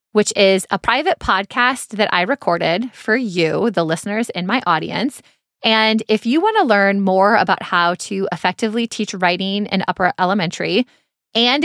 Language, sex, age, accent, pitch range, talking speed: English, female, 20-39, American, 180-225 Hz, 165 wpm